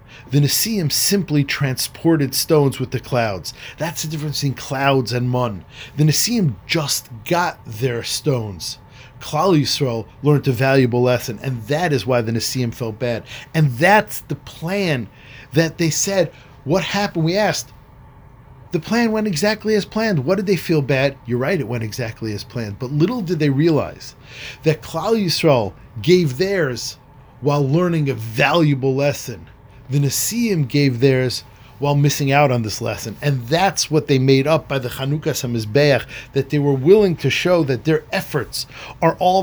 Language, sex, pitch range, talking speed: English, male, 125-160 Hz, 165 wpm